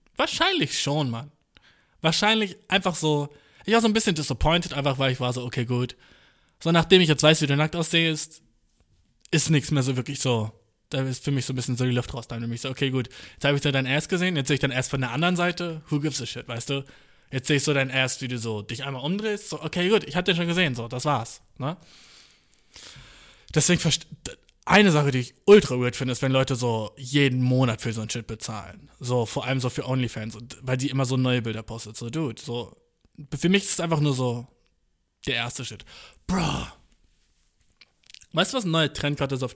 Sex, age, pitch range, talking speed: male, 20-39, 125-165 Hz, 225 wpm